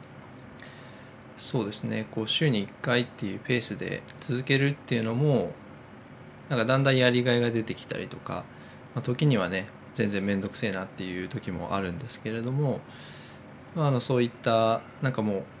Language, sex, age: Japanese, male, 20-39